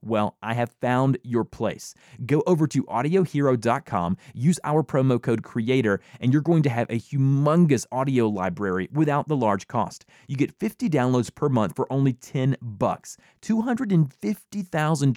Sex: male